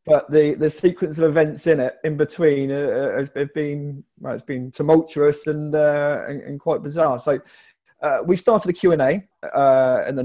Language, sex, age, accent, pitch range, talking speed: English, male, 20-39, British, 130-160 Hz, 200 wpm